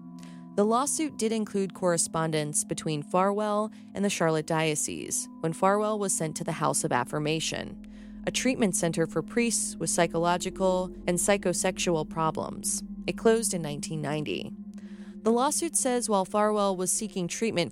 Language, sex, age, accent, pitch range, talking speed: English, female, 30-49, American, 155-205 Hz, 140 wpm